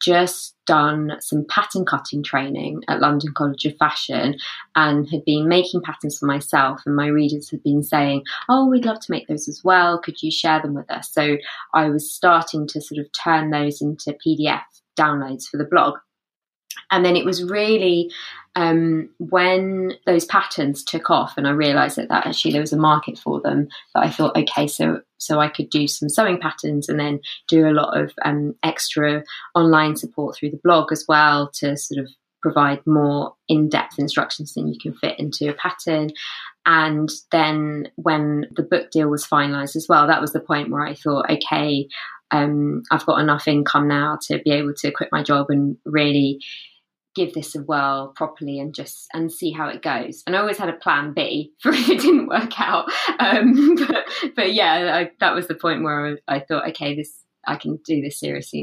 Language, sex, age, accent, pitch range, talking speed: English, female, 20-39, British, 145-170 Hz, 200 wpm